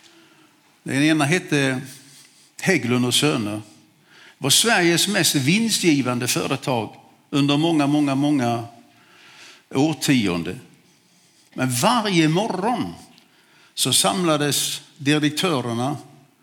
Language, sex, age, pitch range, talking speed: Swedish, male, 60-79, 135-175 Hz, 80 wpm